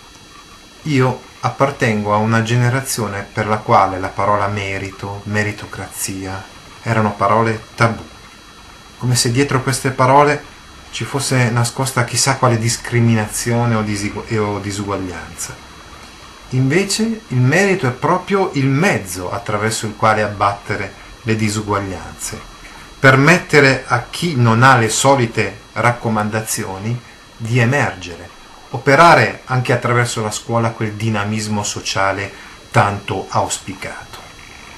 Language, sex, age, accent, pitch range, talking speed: Italian, male, 30-49, native, 105-135 Hz, 105 wpm